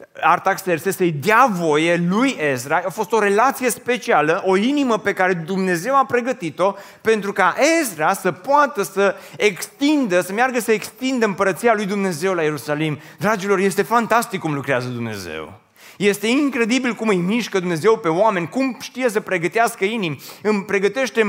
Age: 30-49